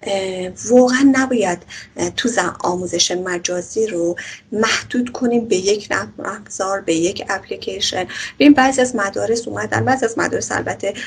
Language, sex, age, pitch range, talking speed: Persian, female, 30-49, 190-255 Hz, 125 wpm